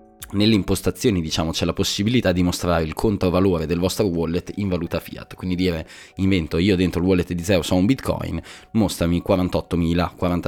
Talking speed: 170 wpm